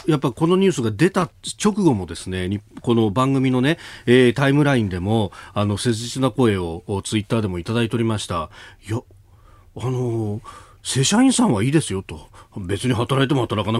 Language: Japanese